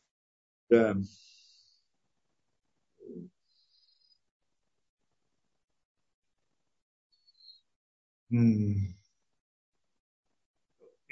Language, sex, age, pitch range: Russian, male, 50-69, 135-180 Hz